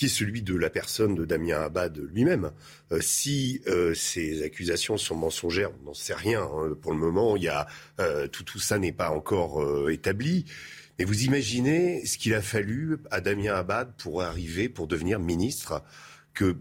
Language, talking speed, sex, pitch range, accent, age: French, 190 wpm, male, 85-125 Hz, French, 40-59